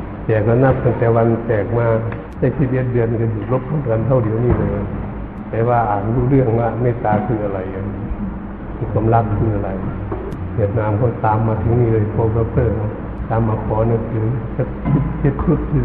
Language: Thai